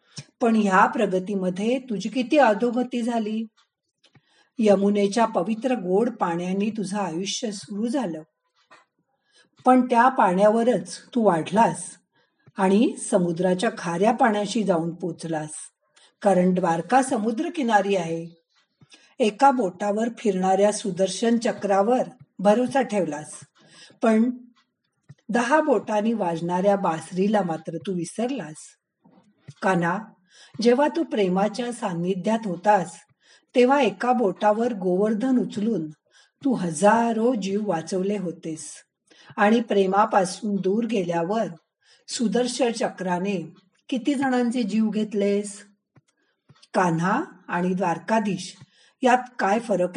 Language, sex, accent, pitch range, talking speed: Marathi, female, native, 185-235 Hz, 85 wpm